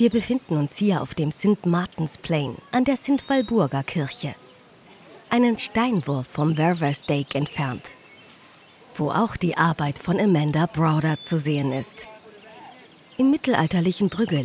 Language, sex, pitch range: Dutch, female, 145-205 Hz